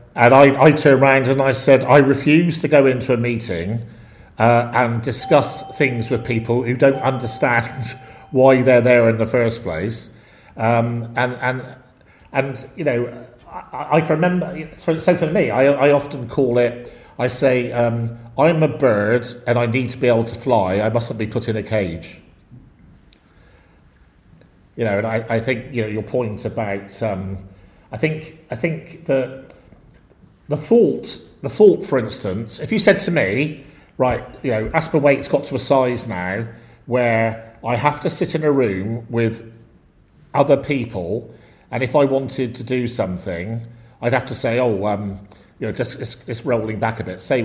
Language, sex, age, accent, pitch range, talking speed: English, male, 50-69, British, 110-135 Hz, 180 wpm